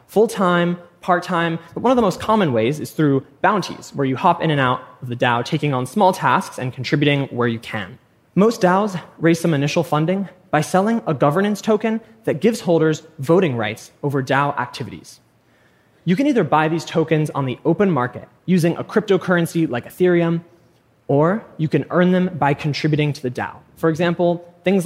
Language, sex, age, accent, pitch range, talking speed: English, male, 20-39, American, 130-180 Hz, 185 wpm